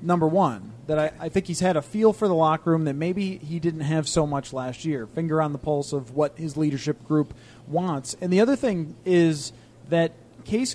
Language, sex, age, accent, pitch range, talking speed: English, male, 30-49, American, 150-185 Hz, 225 wpm